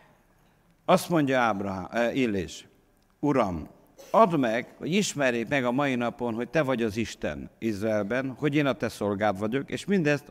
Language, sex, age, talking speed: Hungarian, male, 50-69, 165 wpm